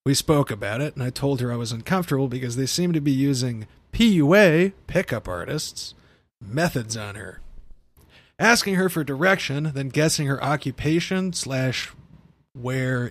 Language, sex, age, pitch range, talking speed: English, male, 30-49, 130-175 Hz, 150 wpm